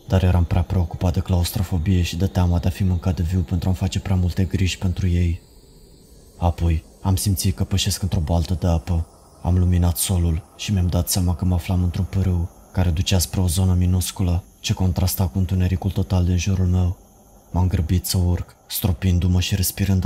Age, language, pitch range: 20-39, Romanian, 90-95 Hz